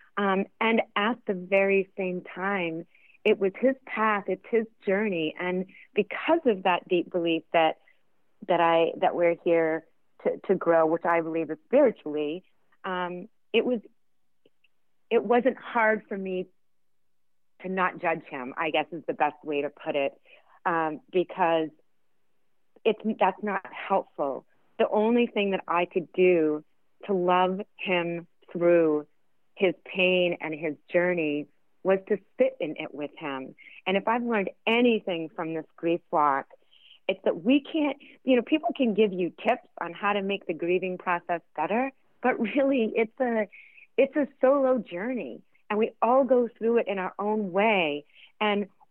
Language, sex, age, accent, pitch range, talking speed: English, female, 30-49, American, 170-225 Hz, 160 wpm